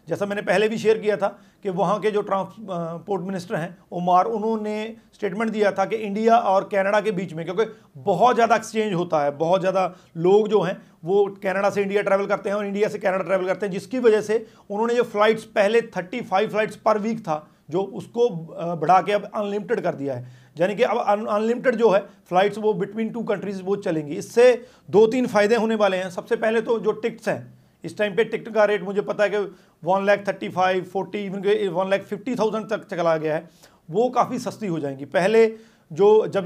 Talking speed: 210 wpm